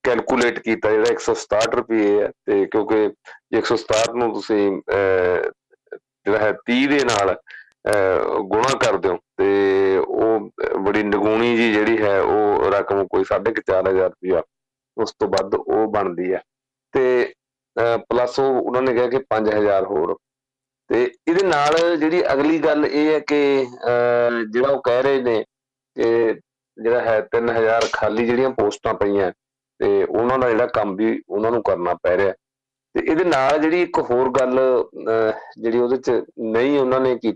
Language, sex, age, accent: English, male, 40-59, Indian